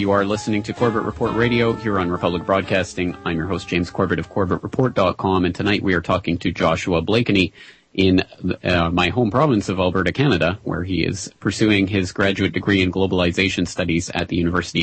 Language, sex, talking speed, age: English, male, 190 wpm, 30-49